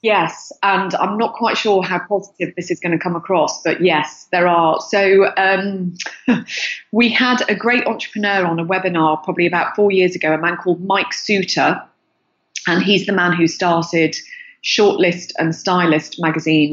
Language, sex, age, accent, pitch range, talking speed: English, female, 30-49, British, 165-210 Hz, 170 wpm